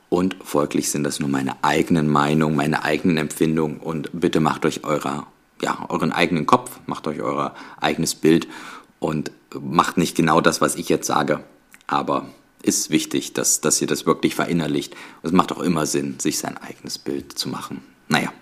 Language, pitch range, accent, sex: German, 75-90 Hz, German, male